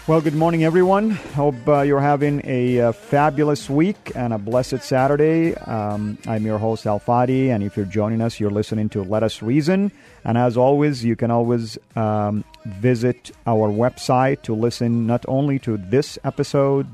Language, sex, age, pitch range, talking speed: English, male, 40-59, 115-145 Hz, 175 wpm